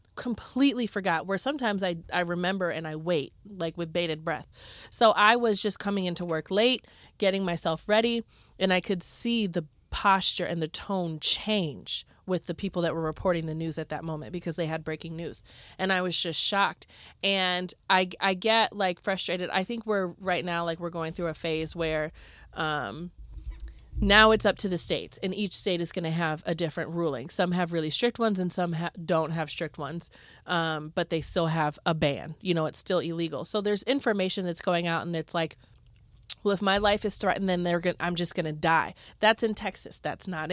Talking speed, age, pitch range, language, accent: 210 wpm, 30-49, 165-220 Hz, English, American